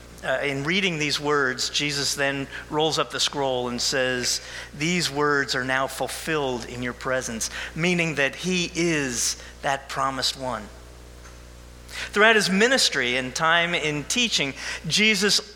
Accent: American